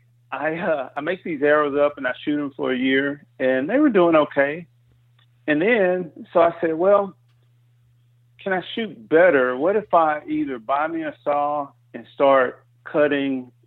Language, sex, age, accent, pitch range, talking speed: English, male, 40-59, American, 120-150 Hz, 175 wpm